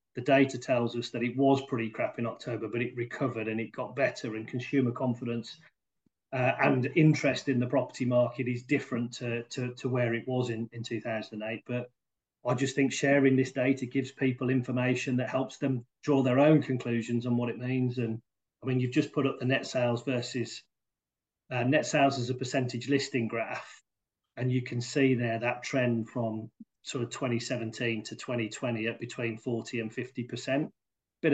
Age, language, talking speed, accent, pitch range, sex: 40-59, English, 190 wpm, British, 120-130 Hz, male